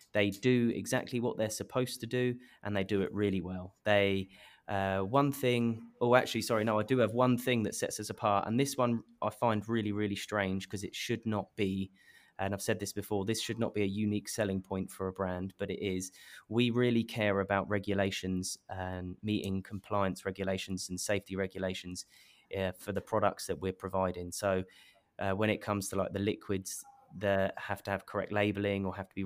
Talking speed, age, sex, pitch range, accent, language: 205 wpm, 20-39, male, 95-110 Hz, British, English